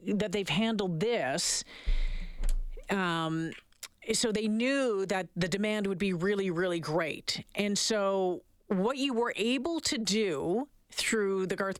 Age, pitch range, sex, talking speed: 40-59, 180-230 Hz, female, 135 wpm